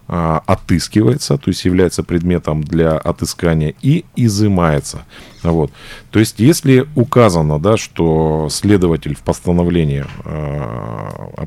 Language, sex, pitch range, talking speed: Russian, male, 80-100 Hz, 100 wpm